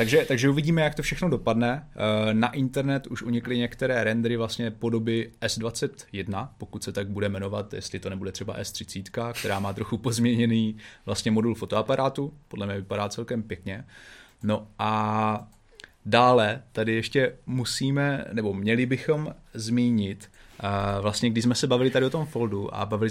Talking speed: 155 wpm